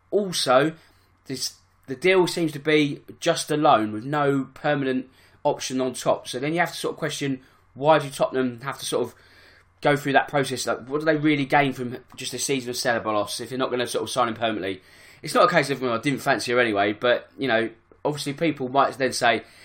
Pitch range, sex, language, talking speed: 120-150 Hz, male, English, 225 wpm